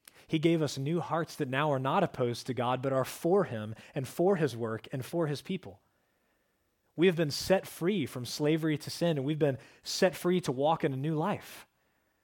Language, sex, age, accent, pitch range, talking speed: English, male, 30-49, American, 125-165 Hz, 215 wpm